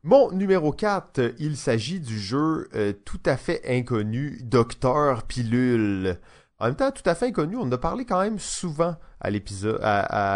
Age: 30-49